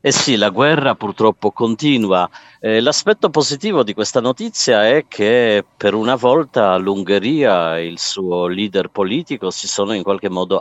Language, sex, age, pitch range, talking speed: Italian, male, 50-69, 90-105 Hz, 160 wpm